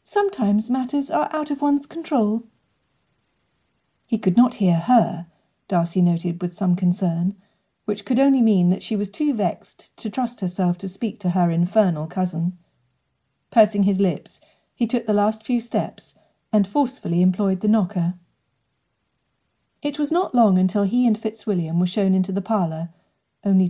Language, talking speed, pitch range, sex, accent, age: English, 160 wpm, 175-225 Hz, female, British, 40-59